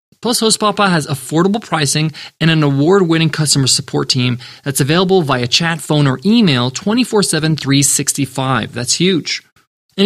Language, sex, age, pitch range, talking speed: English, male, 20-39, 135-190 Hz, 145 wpm